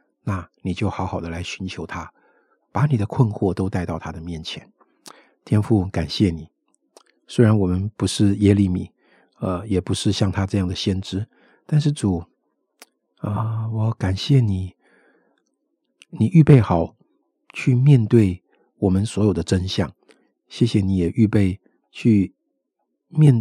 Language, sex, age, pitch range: Chinese, male, 50-69, 95-115 Hz